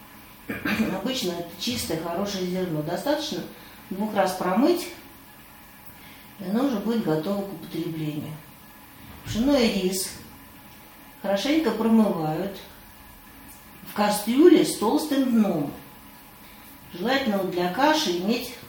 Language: Russian